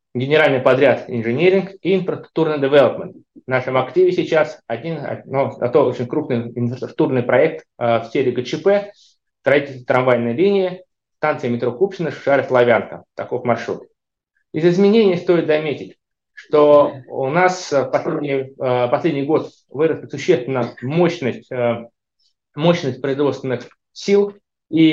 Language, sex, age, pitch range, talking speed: Russian, male, 20-39, 130-165 Hz, 120 wpm